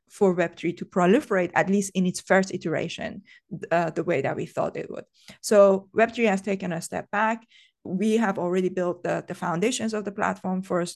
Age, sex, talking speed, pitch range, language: 20-39, female, 195 wpm, 175-205 Hz, English